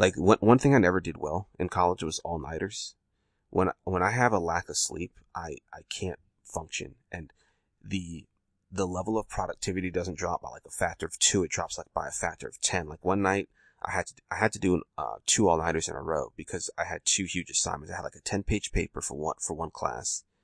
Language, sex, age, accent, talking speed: English, male, 30-49, American, 245 wpm